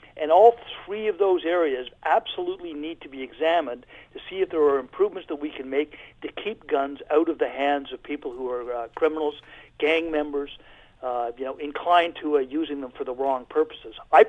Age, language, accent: 50-69, English, American